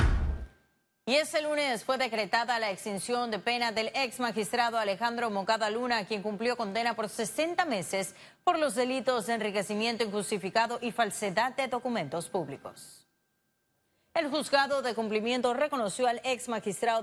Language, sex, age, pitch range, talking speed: Spanish, female, 30-49, 200-250 Hz, 140 wpm